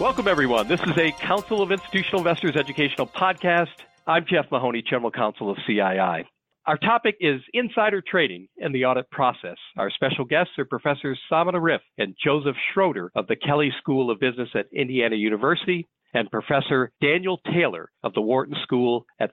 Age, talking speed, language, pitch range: 50-69, 170 wpm, English, 120-180 Hz